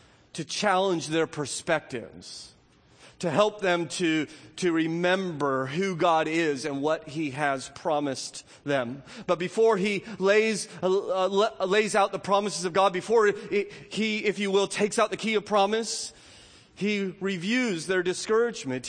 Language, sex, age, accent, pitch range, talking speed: English, male, 40-59, American, 175-205 Hz, 145 wpm